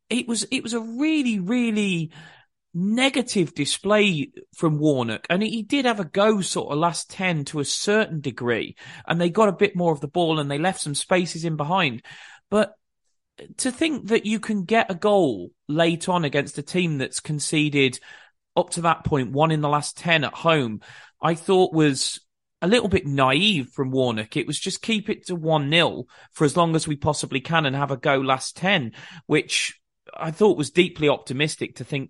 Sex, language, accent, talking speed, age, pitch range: male, English, British, 195 wpm, 30-49, 140-190 Hz